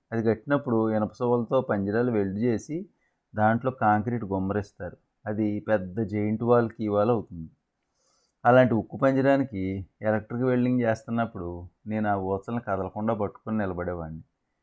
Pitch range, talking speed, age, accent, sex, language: 100-120 Hz, 110 wpm, 30-49, native, male, Telugu